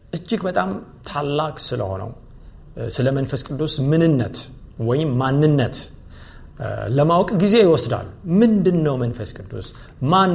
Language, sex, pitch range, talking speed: Amharic, male, 120-170 Hz, 100 wpm